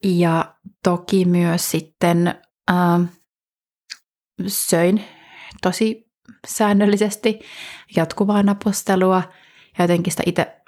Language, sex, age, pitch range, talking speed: Finnish, female, 30-49, 175-205 Hz, 80 wpm